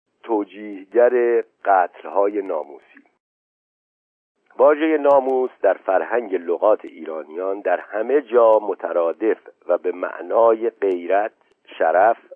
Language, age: Persian, 50-69